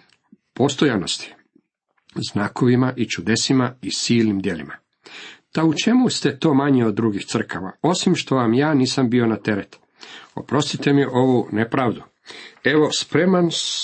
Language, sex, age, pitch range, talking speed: Croatian, male, 50-69, 110-150 Hz, 130 wpm